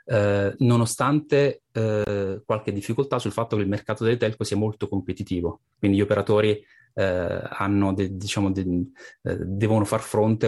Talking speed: 155 wpm